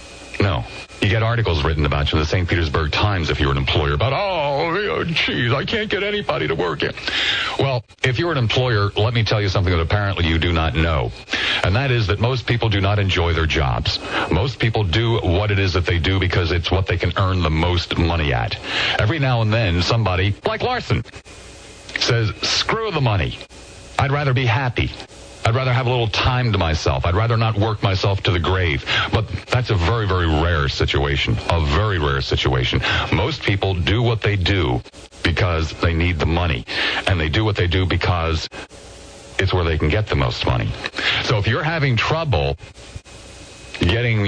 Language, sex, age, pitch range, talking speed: English, male, 50-69, 85-115 Hz, 200 wpm